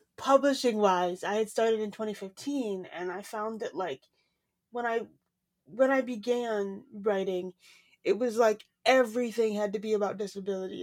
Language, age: English, 20-39